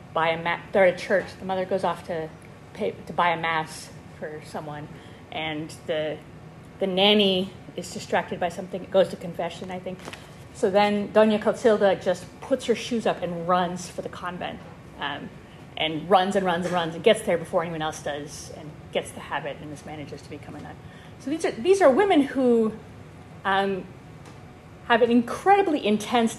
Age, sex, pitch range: 30-49, female, 160-220 Hz